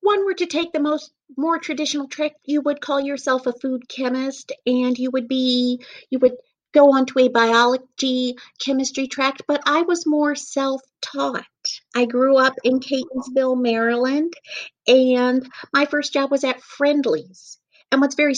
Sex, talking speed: female, 160 wpm